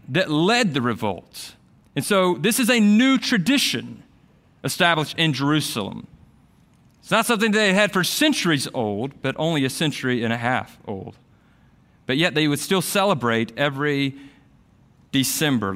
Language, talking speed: English, 145 wpm